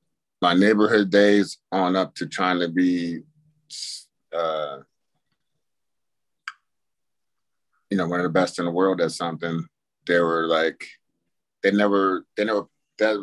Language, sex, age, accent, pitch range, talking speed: English, male, 30-49, American, 85-110 Hz, 130 wpm